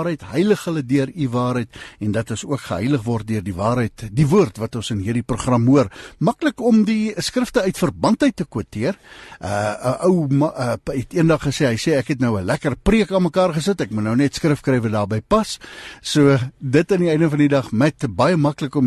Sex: male